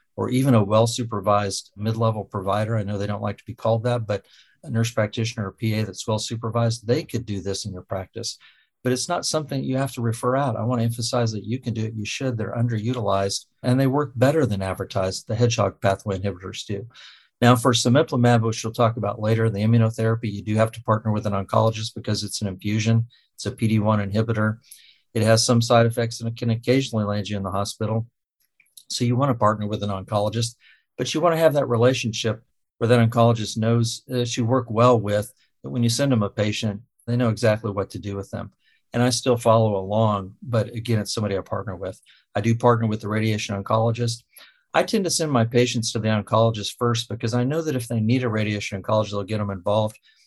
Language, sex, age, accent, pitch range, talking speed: English, male, 50-69, American, 105-120 Hz, 225 wpm